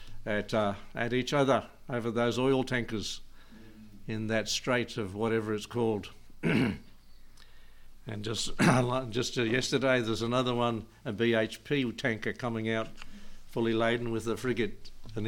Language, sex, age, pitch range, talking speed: English, male, 60-79, 110-125 Hz, 140 wpm